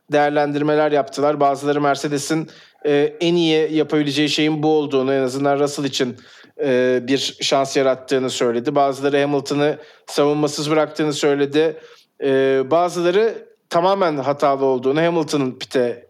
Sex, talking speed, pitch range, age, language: male, 120 wpm, 135-180 Hz, 40-59, Turkish